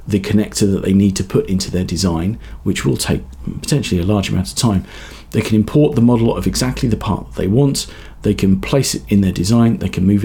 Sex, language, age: male, English, 40-59